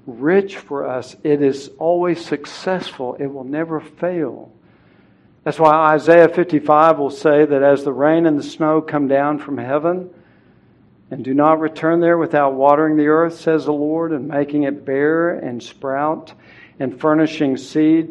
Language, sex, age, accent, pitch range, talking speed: English, male, 60-79, American, 135-160 Hz, 160 wpm